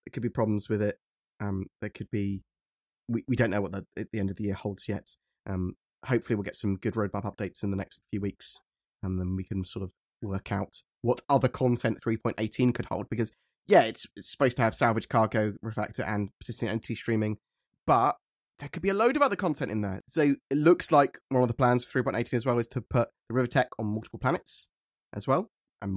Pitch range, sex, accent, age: 105-125 Hz, male, British, 20-39